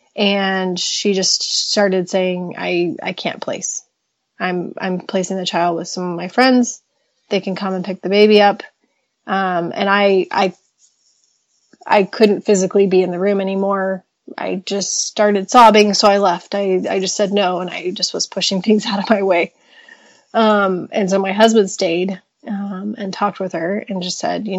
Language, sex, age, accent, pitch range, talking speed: English, female, 30-49, American, 190-215 Hz, 185 wpm